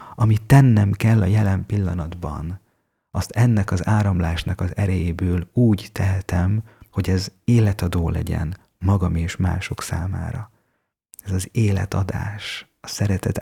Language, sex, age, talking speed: Hungarian, male, 30-49, 120 wpm